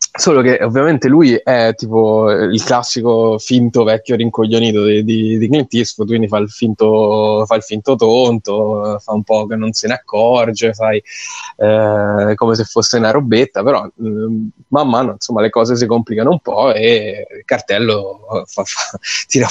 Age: 20-39